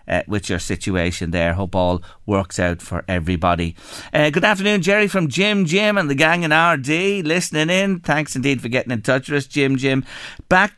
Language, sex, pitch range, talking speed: English, male, 115-160 Hz, 200 wpm